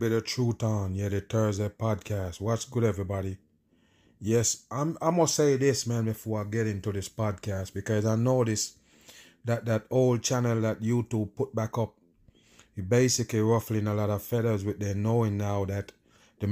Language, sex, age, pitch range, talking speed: English, male, 30-49, 110-150 Hz, 180 wpm